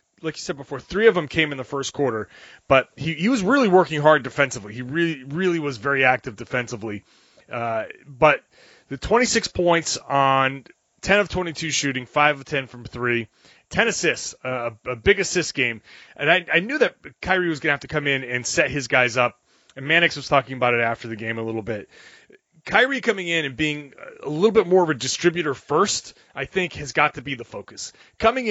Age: 30-49